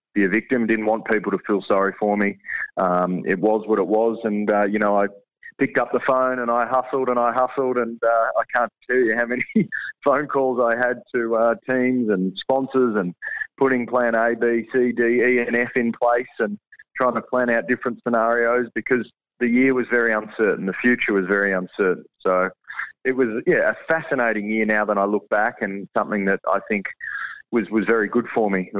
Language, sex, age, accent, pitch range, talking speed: English, male, 30-49, Australian, 100-125 Hz, 215 wpm